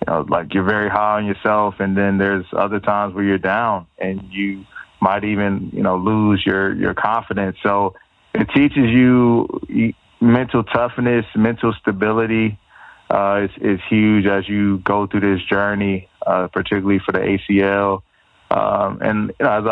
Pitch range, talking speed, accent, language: 95-105 Hz, 165 wpm, American, English